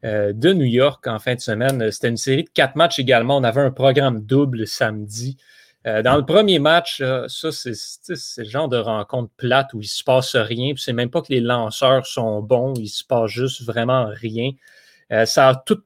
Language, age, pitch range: French, 30-49, 120-155 Hz